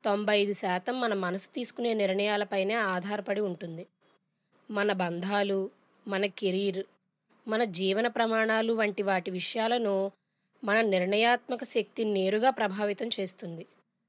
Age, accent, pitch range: 20-39, native, 195-235 Hz